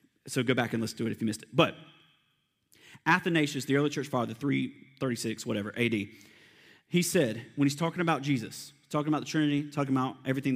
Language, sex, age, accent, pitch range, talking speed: English, male, 40-59, American, 135-175 Hz, 195 wpm